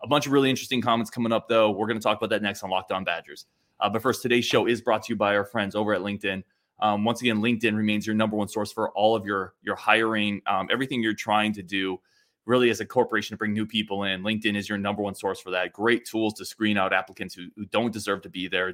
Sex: male